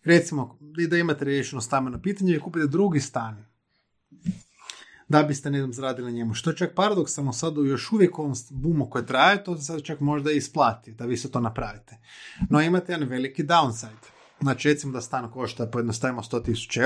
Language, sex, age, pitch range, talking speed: Croatian, male, 30-49, 125-165 Hz, 185 wpm